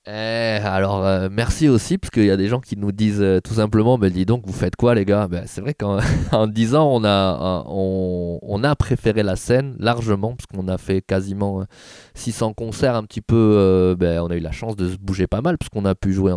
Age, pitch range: 20-39, 95-115 Hz